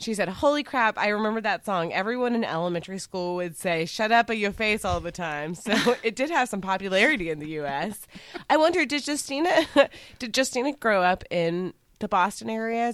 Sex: female